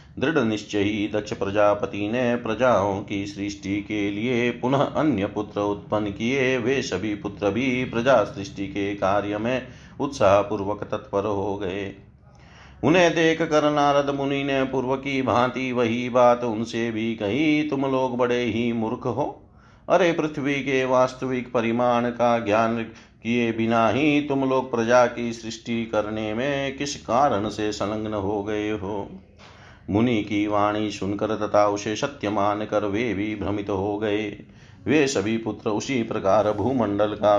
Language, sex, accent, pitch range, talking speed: Hindi, male, native, 105-130 Hz, 150 wpm